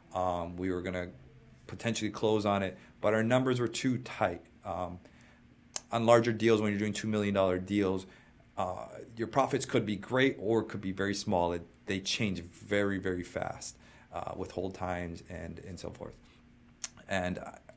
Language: English